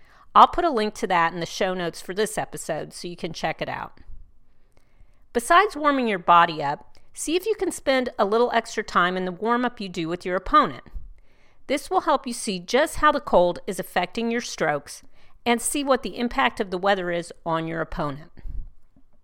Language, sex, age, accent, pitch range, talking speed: English, female, 40-59, American, 175-245 Hz, 210 wpm